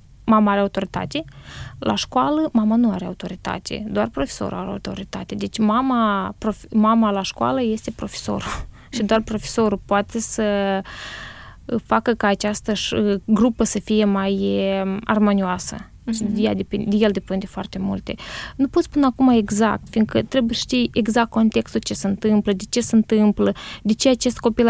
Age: 20-39